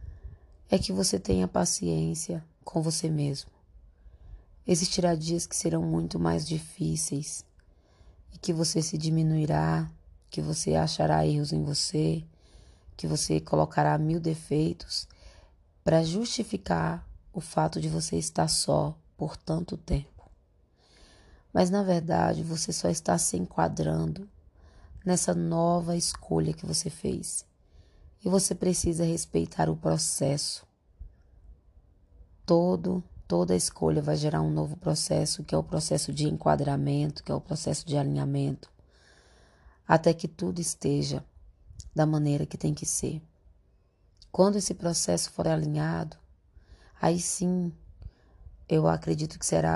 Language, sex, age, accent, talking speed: Portuguese, female, 20-39, Brazilian, 125 wpm